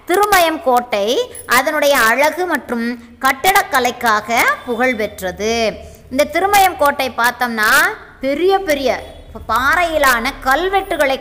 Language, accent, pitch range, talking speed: Tamil, native, 215-295 Hz, 85 wpm